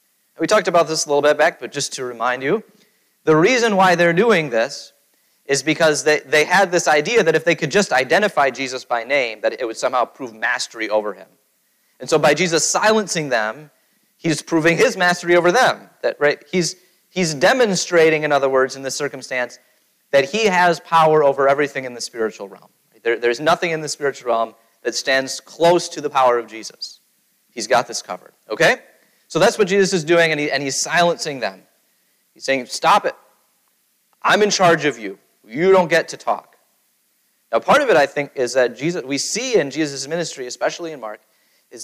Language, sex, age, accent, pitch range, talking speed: English, male, 30-49, American, 135-185 Hz, 200 wpm